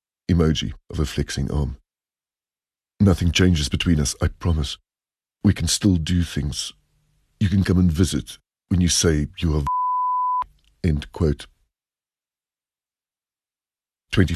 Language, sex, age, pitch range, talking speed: English, male, 50-69, 75-90 Hz, 120 wpm